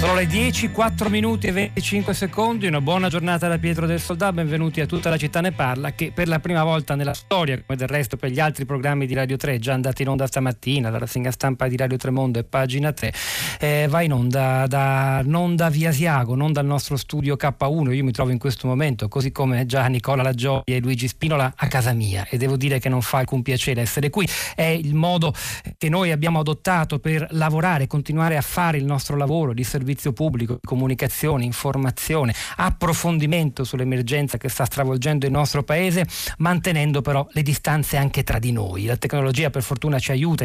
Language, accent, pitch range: Italian, native, 130-155 Hz